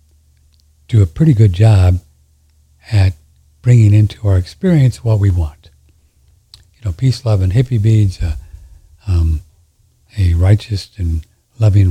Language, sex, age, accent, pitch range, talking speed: English, male, 60-79, American, 85-115 Hz, 130 wpm